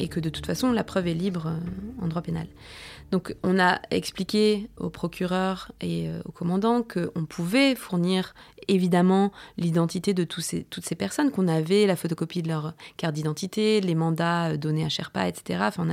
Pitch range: 170-220 Hz